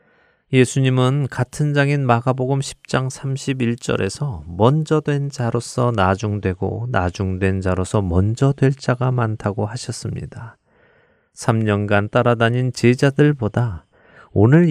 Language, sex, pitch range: Korean, male, 100-135 Hz